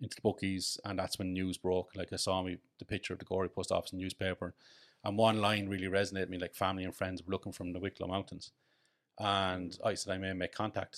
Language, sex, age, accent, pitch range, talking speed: English, male, 30-49, Irish, 95-100 Hz, 245 wpm